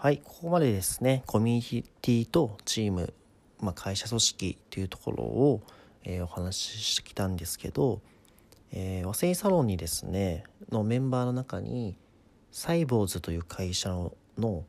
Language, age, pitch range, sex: Japanese, 40-59, 95-125 Hz, male